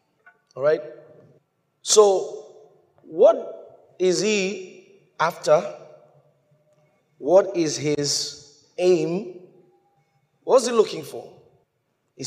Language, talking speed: English, 85 wpm